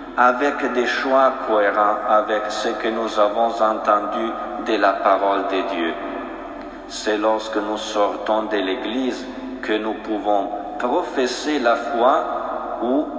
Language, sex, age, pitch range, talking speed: French, male, 50-69, 110-135 Hz, 125 wpm